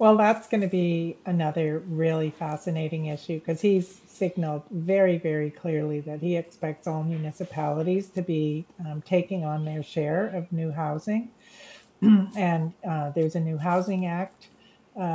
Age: 50-69